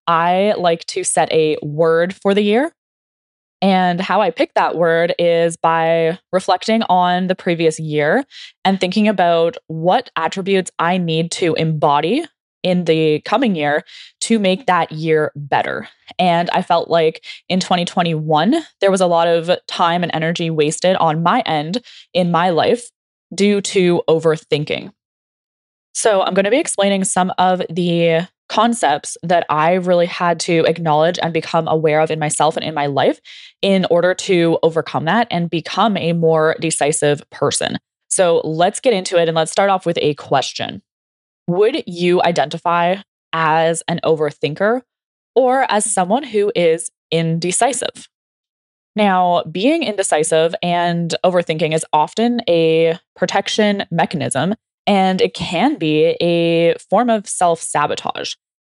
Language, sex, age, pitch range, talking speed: English, female, 10-29, 165-195 Hz, 145 wpm